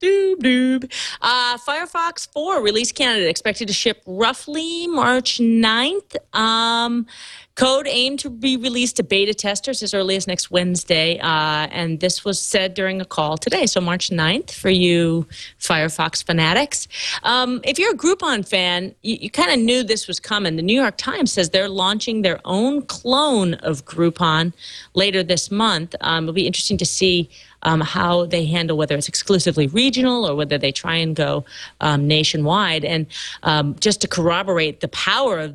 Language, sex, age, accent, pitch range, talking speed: English, female, 40-59, American, 165-230 Hz, 170 wpm